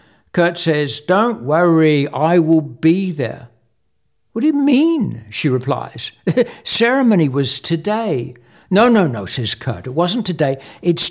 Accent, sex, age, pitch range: British, male, 60-79, 125-165 Hz